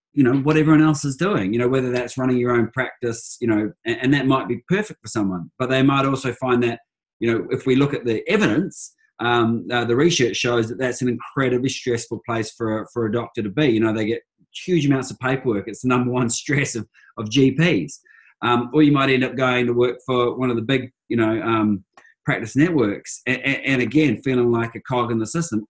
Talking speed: 235 wpm